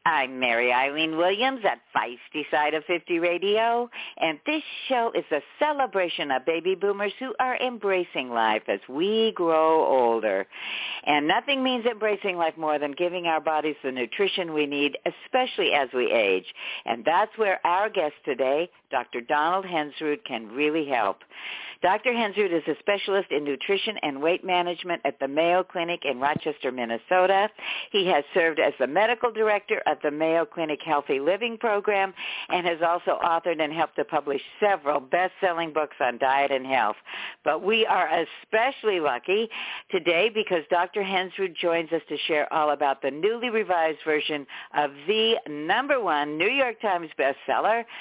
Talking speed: 160 wpm